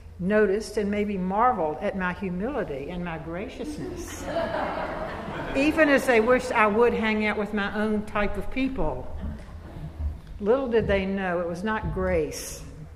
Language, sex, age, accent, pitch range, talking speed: English, female, 60-79, American, 175-220 Hz, 150 wpm